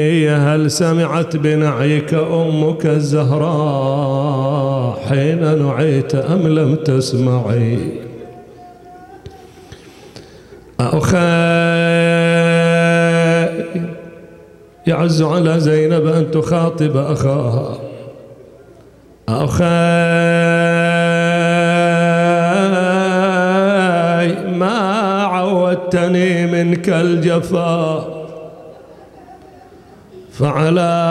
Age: 40-59